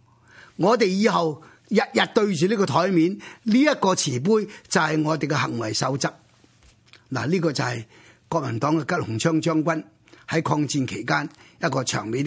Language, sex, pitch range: Chinese, male, 135-165 Hz